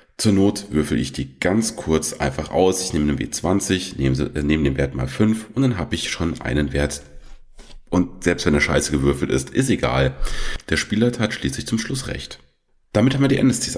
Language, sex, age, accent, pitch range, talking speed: German, male, 40-59, German, 70-95 Hz, 210 wpm